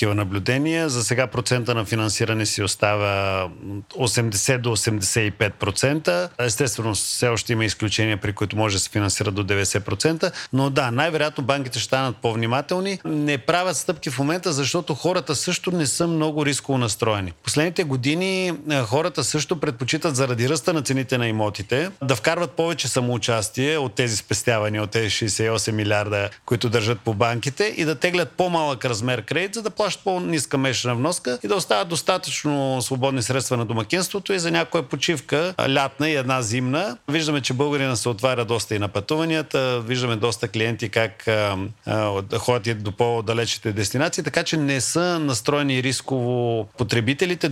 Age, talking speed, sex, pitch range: 40-59, 155 wpm, male, 115-150 Hz